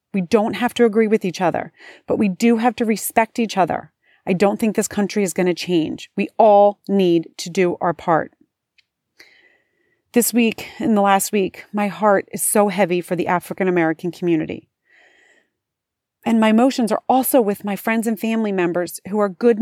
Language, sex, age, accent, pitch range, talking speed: English, female, 30-49, American, 190-230 Hz, 185 wpm